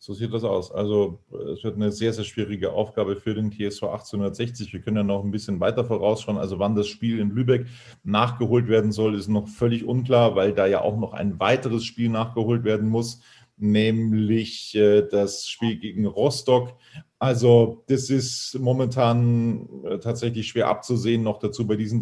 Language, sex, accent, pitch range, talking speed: German, male, German, 105-125 Hz, 175 wpm